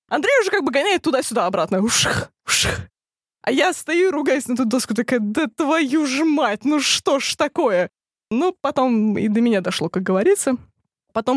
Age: 20-39